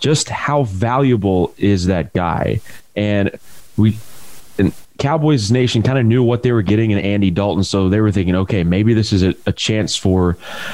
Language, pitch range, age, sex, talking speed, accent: English, 95-130 Hz, 30-49, male, 185 wpm, American